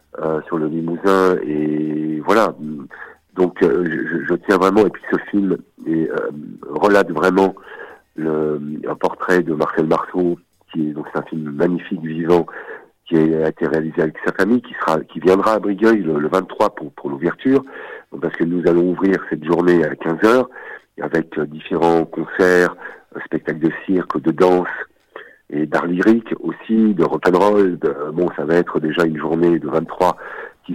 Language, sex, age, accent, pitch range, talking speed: French, male, 50-69, French, 80-95 Hz, 170 wpm